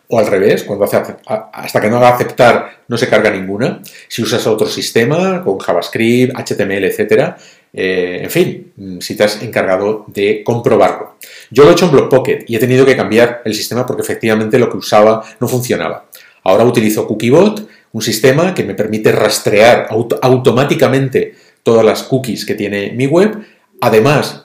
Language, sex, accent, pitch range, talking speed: Spanish, male, Spanish, 105-145 Hz, 170 wpm